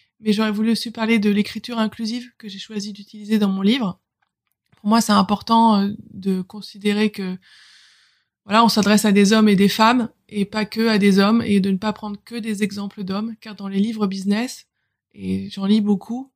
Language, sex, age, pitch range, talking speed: French, female, 20-39, 200-225 Hz, 200 wpm